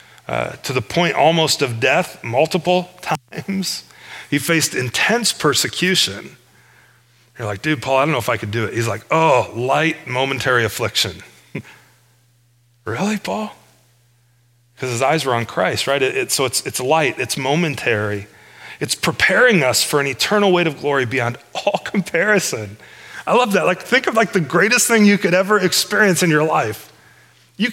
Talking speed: 170 wpm